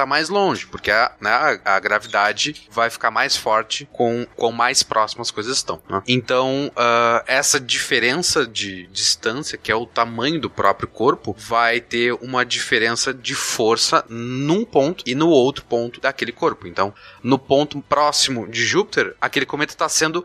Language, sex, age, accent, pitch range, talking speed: Portuguese, male, 20-39, Brazilian, 110-140 Hz, 165 wpm